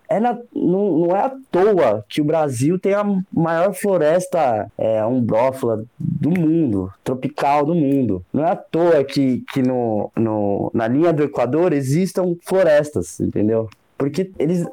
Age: 20-39